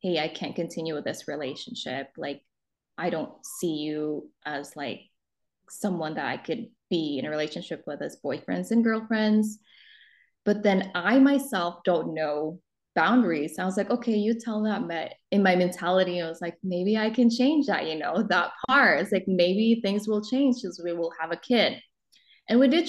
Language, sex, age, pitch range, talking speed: English, female, 20-39, 170-215 Hz, 185 wpm